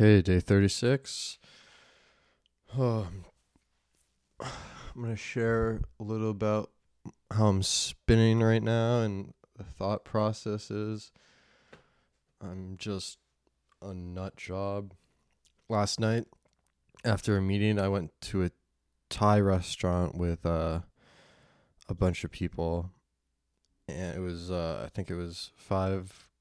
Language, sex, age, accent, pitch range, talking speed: English, male, 20-39, American, 85-105 Hz, 115 wpm